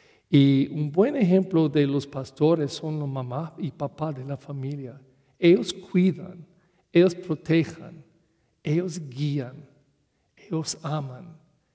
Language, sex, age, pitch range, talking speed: English, male, 50-69, 135-155 Hz, 115 wpm